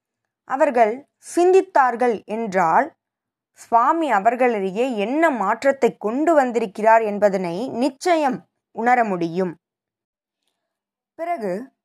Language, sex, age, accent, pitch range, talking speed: Tamil, female, 20-39, native, 195-260 Hz, 70 wpm